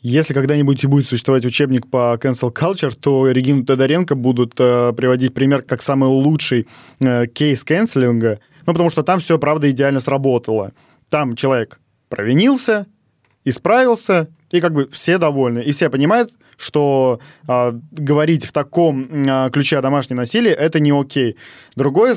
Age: 20-39